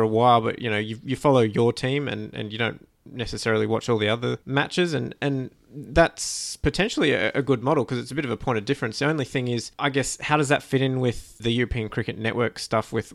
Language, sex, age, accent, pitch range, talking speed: English, male, 20-39, Australian, 110-135 Hz, 250 wpm